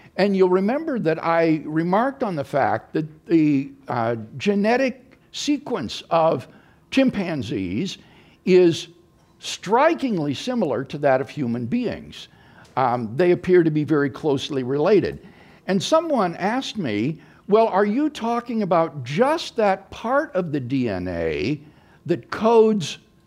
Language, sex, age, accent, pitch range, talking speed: English, male, 60-79, American, 155-225 Hz, 125 wpm